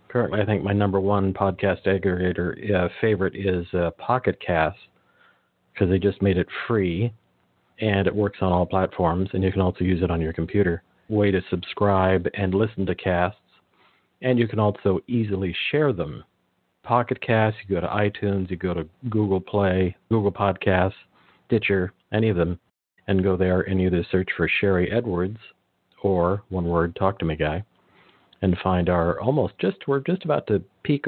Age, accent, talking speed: 50-69, American, 180 wpm